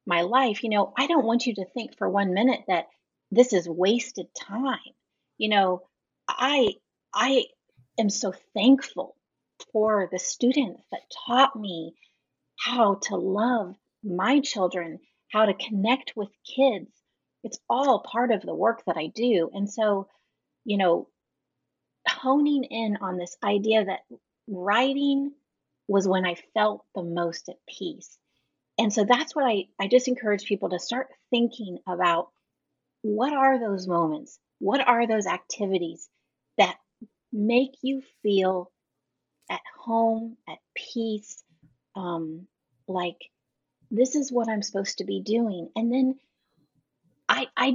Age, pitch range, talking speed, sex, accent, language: 30-49, 185-245 Hz, 140 wpm, female, American, English